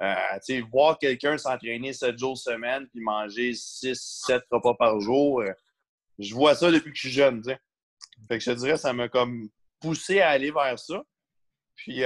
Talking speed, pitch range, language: 200 wpm, 110-135 Hz, French